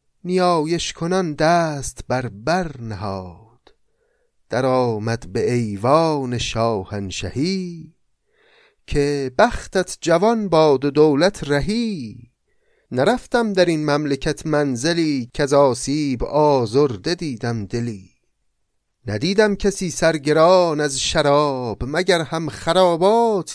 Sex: male